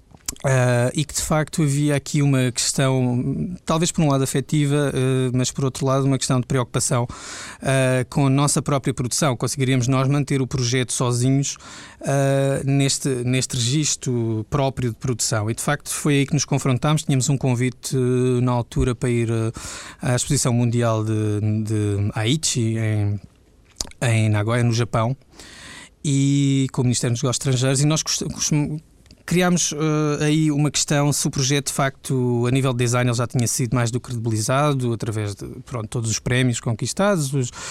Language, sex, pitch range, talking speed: Portuguese, male, 125-145 Hz, 170 wpm